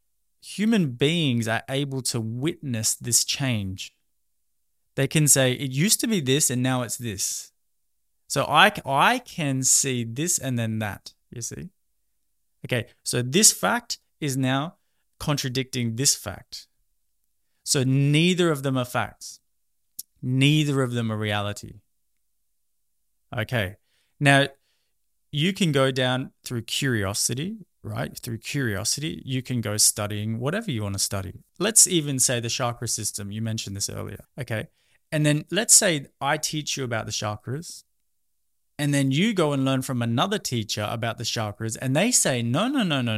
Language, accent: English, Australian